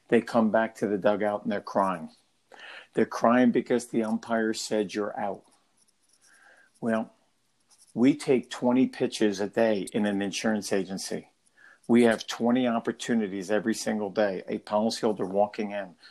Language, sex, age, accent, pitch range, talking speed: English, male, 50-69, American, 105-120 Hz, 145 wpm